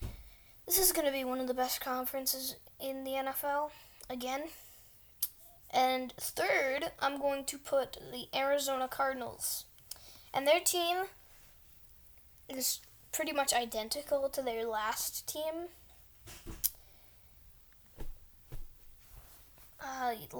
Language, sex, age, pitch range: English, female, 10-29, 250-285 Hz